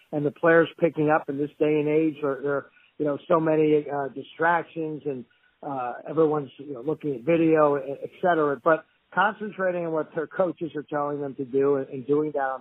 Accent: American